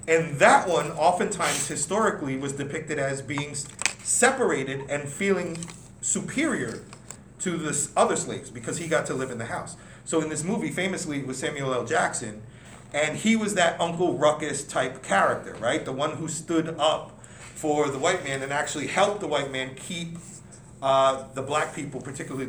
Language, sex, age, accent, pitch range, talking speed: English, male, 40-59, American, 140-180 Hz, 170 wpm